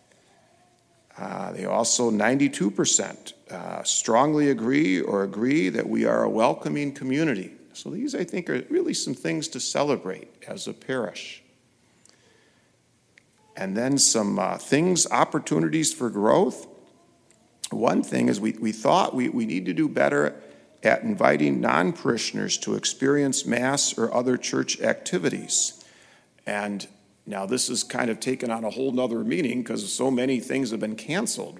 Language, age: English, 50-69